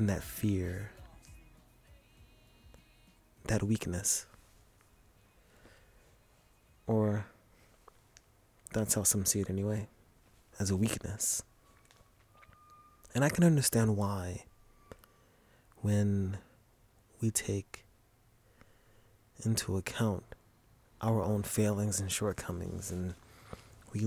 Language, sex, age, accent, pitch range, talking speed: English, male, 30-49, American, 95-110 Hz, 75 wpm